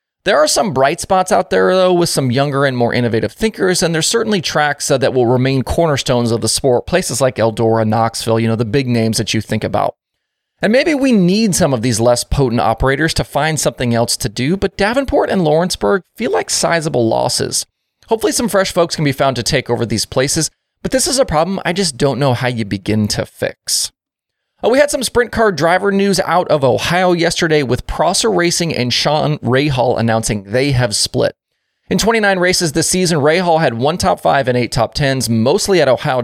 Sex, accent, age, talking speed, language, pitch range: male, American, 30-49, 210 wpm, English, 120-180 Hz